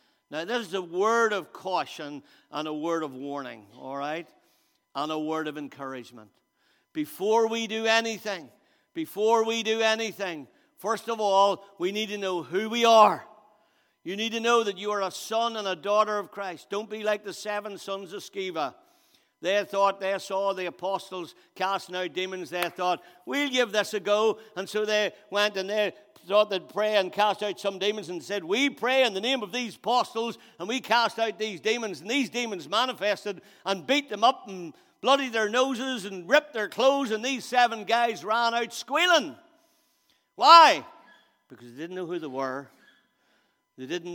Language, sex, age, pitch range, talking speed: English, male, 60-79, 160-220 Hz, 190 wpm